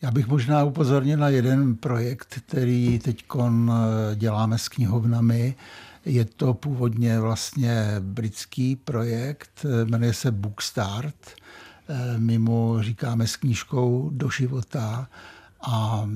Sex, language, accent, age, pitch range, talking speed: male, Czech, native, 60-79, 110-130 Hz, 110 wpm